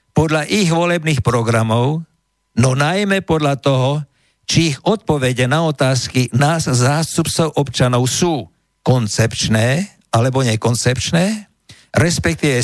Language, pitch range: Slovak, 120-165 Hz